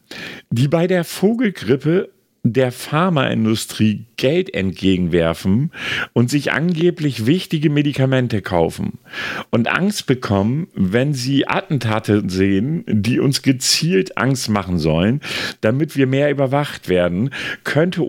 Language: German